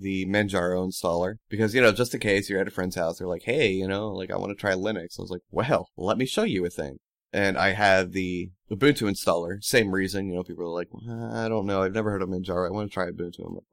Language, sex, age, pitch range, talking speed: English, male, 20-39, 90-105 Hz, 275 wpm